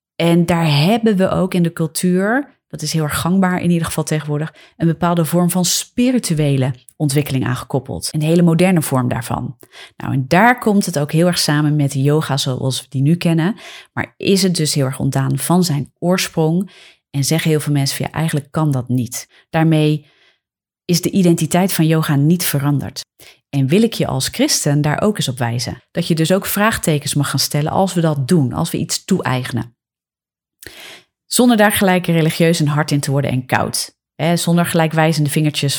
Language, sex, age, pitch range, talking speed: Dutch, female, 30-49, 140-175 Hz, 195 wpm